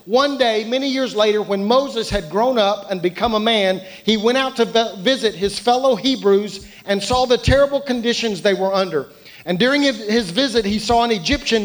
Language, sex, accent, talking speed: English, male, American, 195 wpm